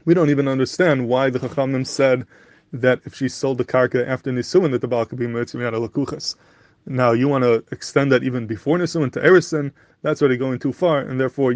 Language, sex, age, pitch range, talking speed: English, male, 20-39, 125-150 Hz, 215 wpm